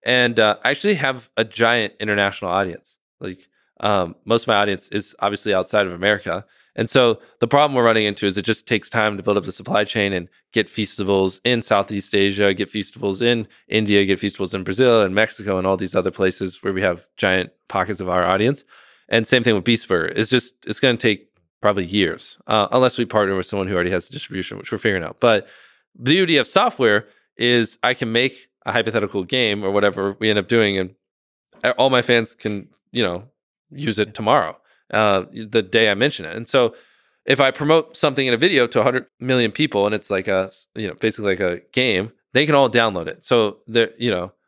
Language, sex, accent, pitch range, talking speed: English, male, American, 100-120 Hz, 220 wpm